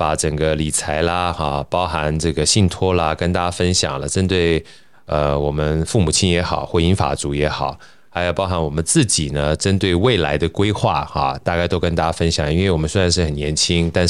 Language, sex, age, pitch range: Chinese, male, 20-39, 80-105 Hz